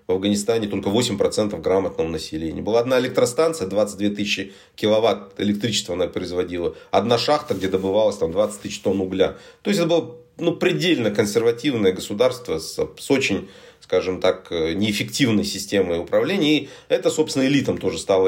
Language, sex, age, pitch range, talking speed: Russian, male, 40-59, 100-170 Hz, 145 wpm